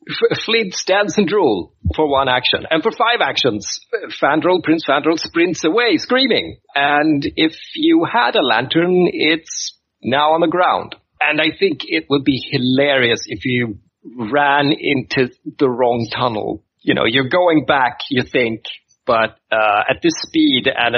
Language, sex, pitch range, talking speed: English, male, 125-180 Hz, 155 wpm